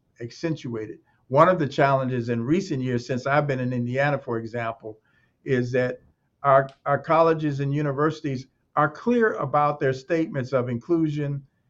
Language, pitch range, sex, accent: English, 125-150 Hz, male, American